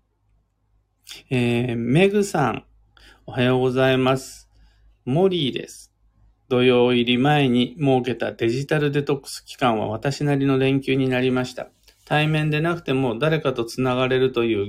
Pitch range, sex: 110-145 Hz, male